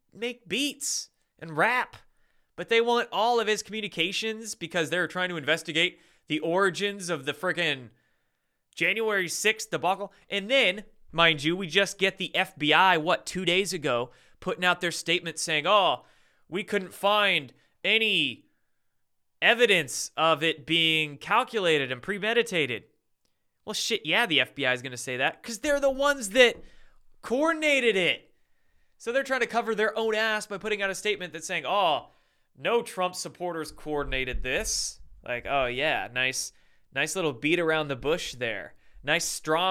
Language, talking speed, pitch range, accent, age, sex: English, 155 wpm, 155-210 Hz, American, 20-39, male